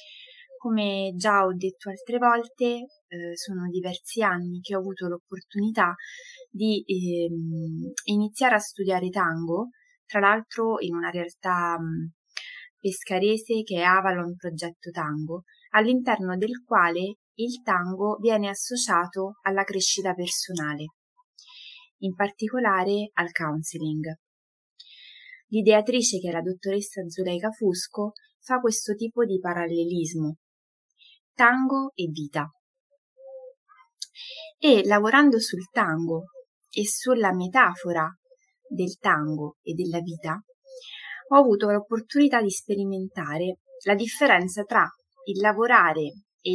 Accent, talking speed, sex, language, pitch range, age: native, 105 wpm, female, Italian, 175-245 Hz, 20-39